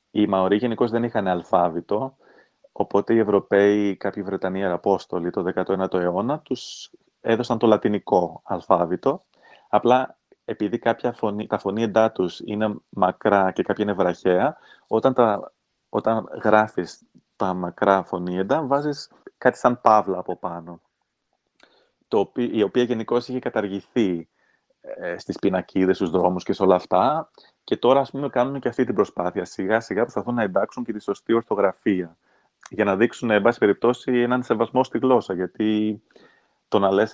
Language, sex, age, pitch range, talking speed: Greek, male, 30-49, 95-120 Hz, 145 wpm